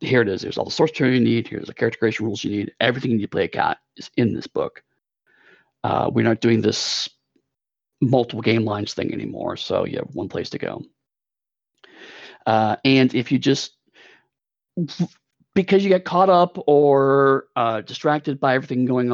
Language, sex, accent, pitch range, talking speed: English, male, American, 110-135 Hz, 190 wpm